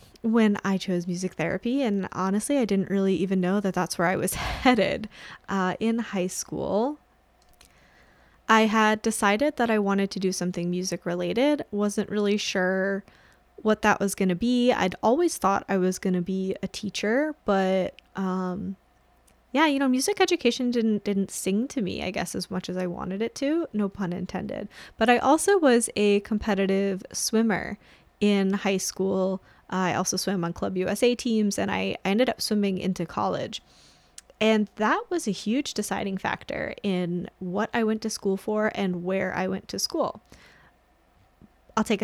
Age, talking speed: 10-29, 175 wpm